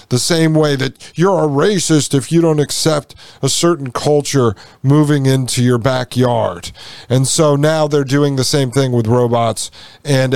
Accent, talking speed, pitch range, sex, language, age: American, 170 wpm, 120-150 Hz, male, English, 40-59